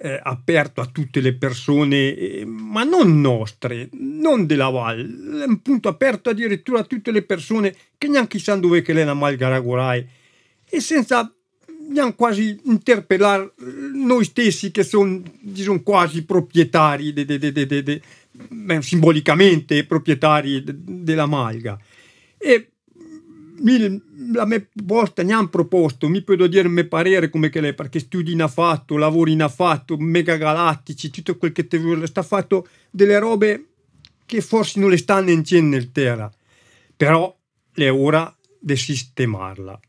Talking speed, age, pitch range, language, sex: 140 wpm, 50-69, 145-210 Hz, Italian, male